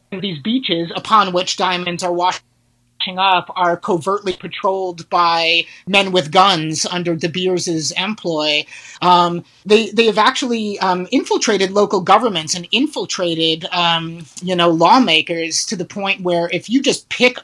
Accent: American